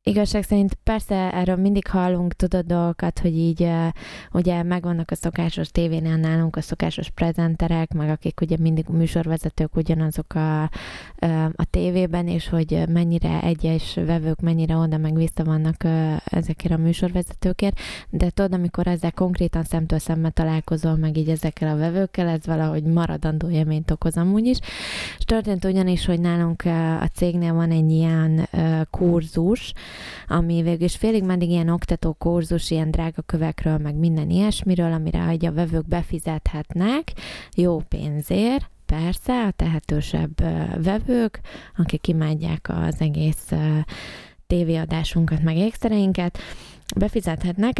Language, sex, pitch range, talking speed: Hungarian, female, 160-180 Hz, 130 wpm